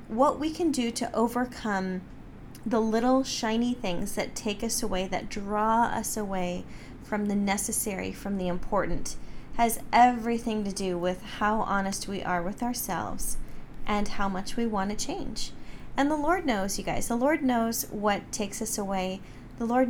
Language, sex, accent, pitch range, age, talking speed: English, female, American, 195-235 Hz, 30-49, 170 wpm